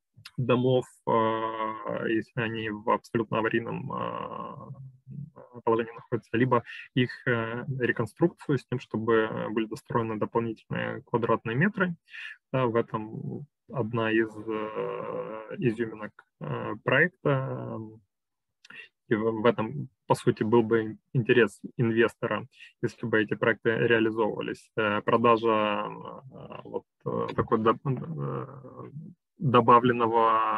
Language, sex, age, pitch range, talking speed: Ukrainian, male, 20-39, 110-130 Hz, 85 wpm